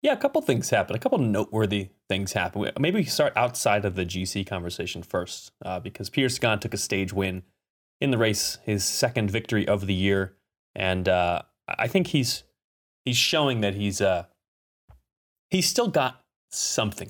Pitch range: 95-125 Hz